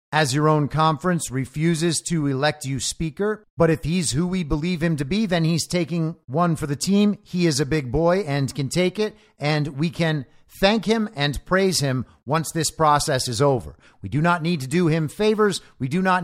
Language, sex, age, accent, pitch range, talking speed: English, male, 50-69, American, 145-185 Hz, 215 wpm